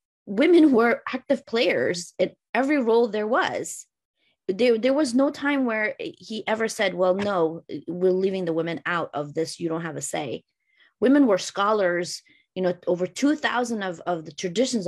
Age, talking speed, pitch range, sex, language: 20-39, 175 wpm, 170-220 Hz, female, Arabic